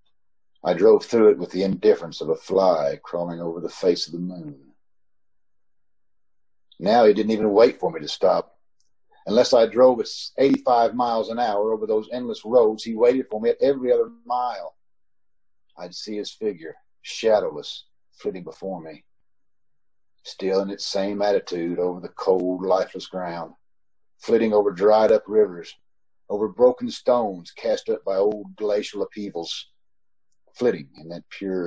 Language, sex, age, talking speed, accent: English, male, 50-69, 155 wpm, American